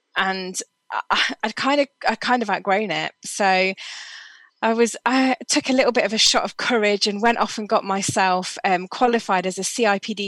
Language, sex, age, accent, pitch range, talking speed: English, female, 20-39, British, 185-225 Hz, 195 wpm